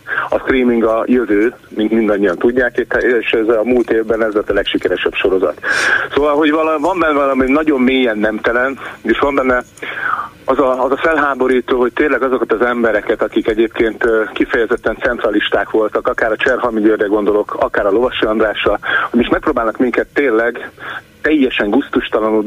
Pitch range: 110-130 Hz